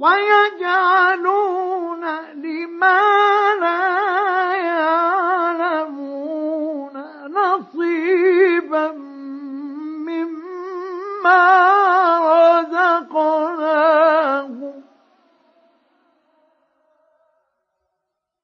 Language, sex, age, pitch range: Arabic, male, 50-69, 305-345 Hz